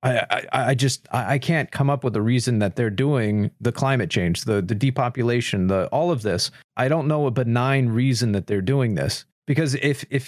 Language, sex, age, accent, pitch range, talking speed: English, male, 30-49, American, 105-135 Hz, 215 wpm